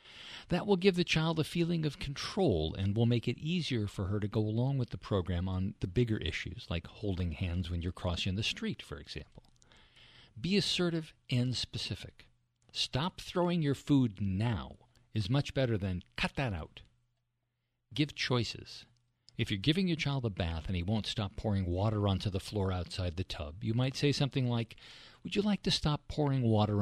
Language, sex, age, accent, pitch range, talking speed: English, male, 50-69, American, 100-130 Hz, 190 wpm